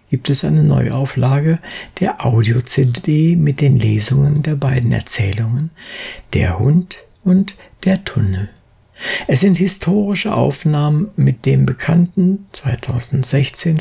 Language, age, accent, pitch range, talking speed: German, 60-79, German, 115-160 Hz, 110 wpm